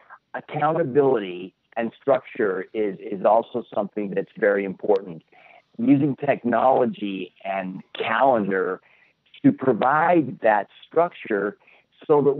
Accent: American